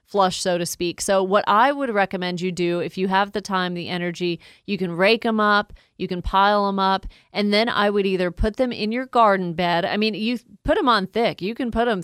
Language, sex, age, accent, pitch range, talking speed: English, female, 30-49, American, 175-200 Hz, 250 wpm